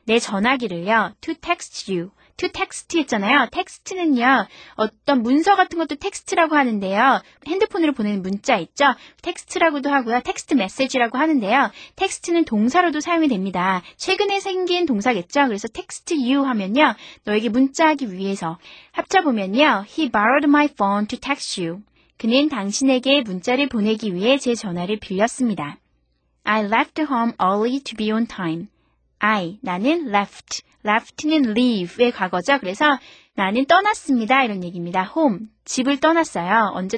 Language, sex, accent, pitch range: Korean, female, native, 205-290 Hz